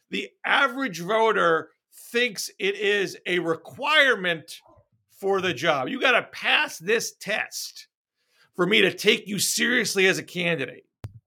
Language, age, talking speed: English, 50-69, 140 wpm